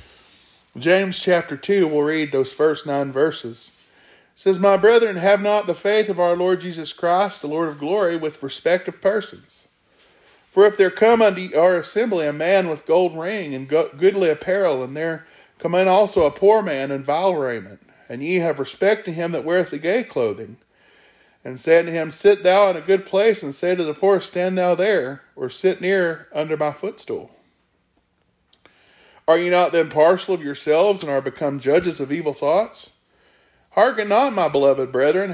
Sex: male